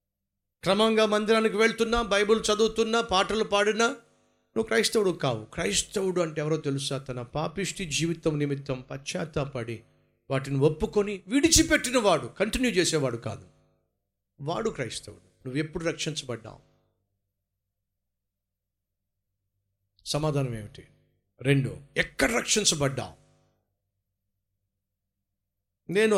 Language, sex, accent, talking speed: Telugu, male, native, 85 wpm